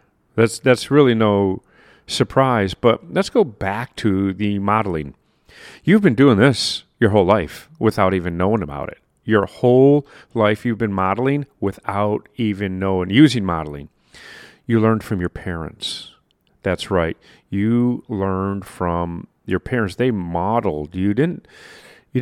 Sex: male